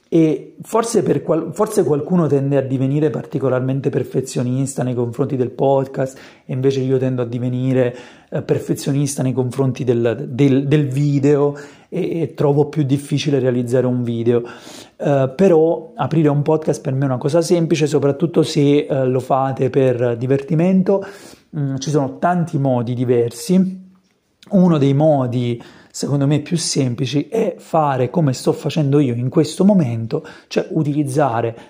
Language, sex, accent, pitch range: Italian, male, native, 130-155 Hz